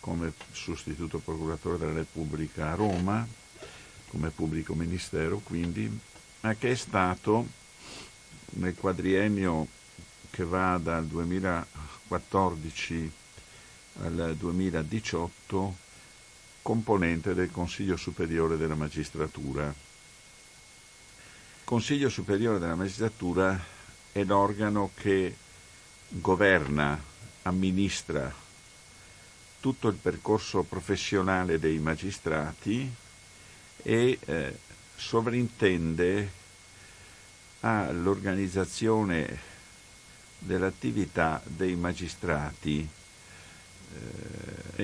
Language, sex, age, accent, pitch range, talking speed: Italian, male, 50-69, native, 85-100 Hz, 70 wpm